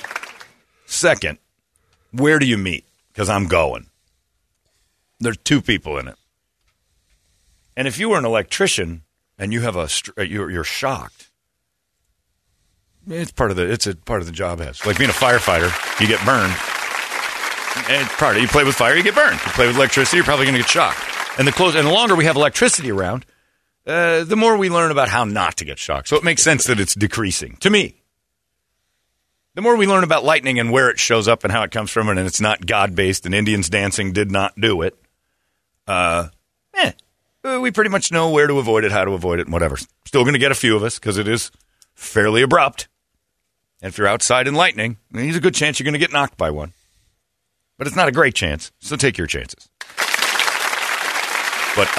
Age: 50-69